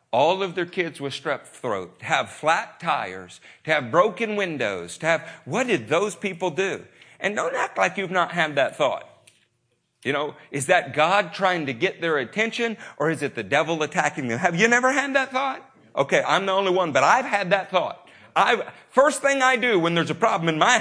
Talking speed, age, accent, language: 215 wpm, 50-69, American, English